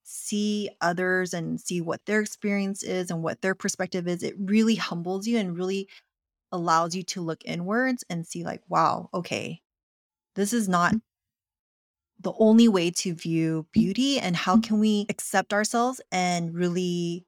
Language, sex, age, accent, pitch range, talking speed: English, female, 20-39, American, 170-205 Hz, 160 wpm